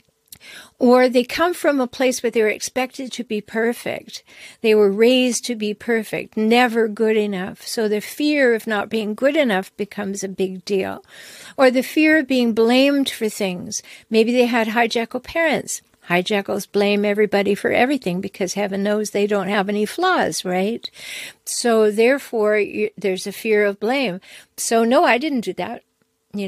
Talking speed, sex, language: 170 wpm, female, English